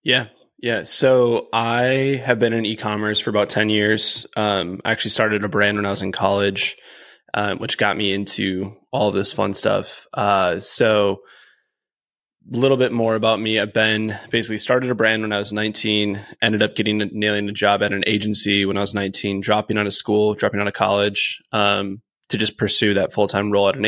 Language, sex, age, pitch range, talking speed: English, male, 20-39, 100-110 Hz, 210 wpm